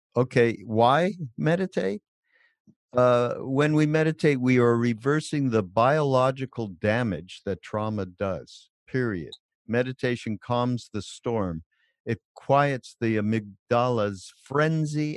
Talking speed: 105 wpm